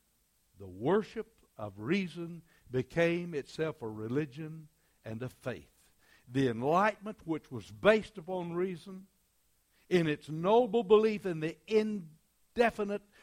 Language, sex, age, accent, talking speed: English, male, 60-79, American, 115 wpm